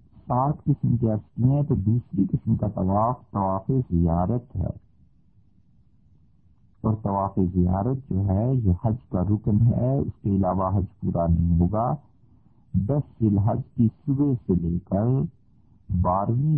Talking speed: 120 wpm